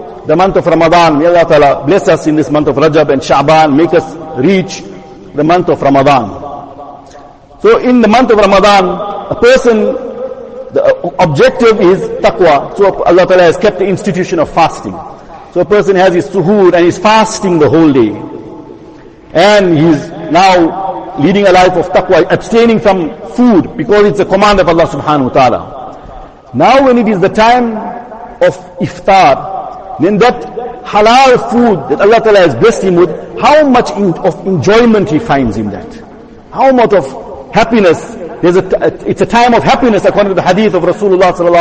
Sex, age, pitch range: male, 50-69, 175-235 Hz